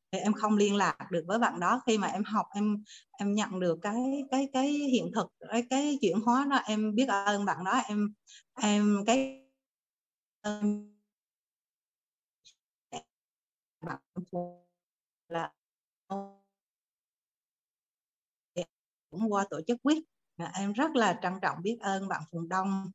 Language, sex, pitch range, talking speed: Vietnamese, female, 185-235 Hz, 130 wpm